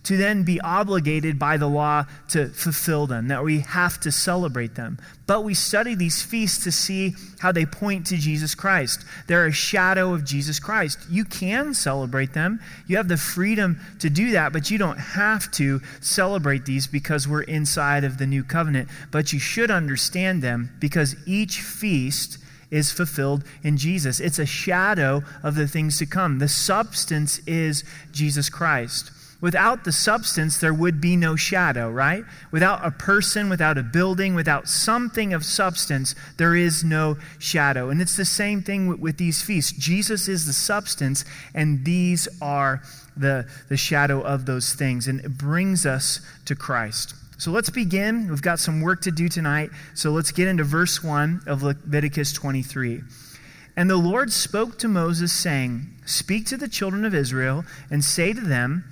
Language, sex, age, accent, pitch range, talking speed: English, male, 30-49, American, 145-185 Hz, 175 wpm